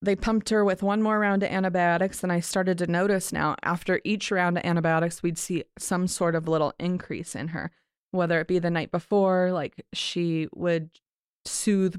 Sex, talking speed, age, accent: female, 195 wpm, 20-39, American